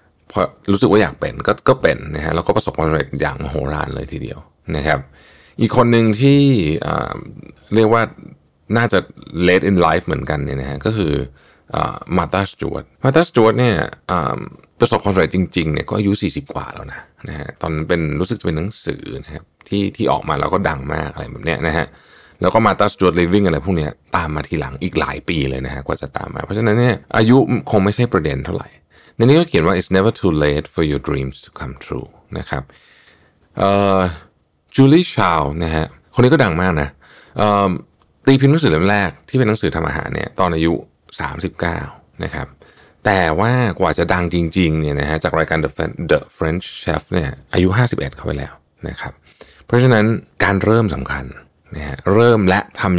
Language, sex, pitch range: Thai, male, 75-105 Hz